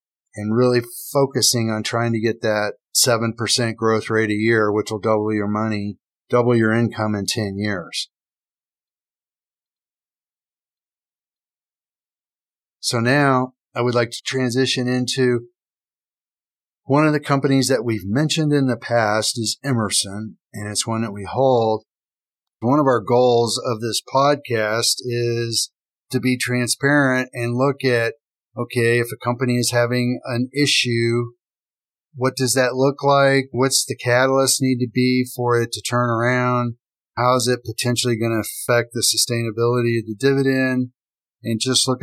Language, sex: English, male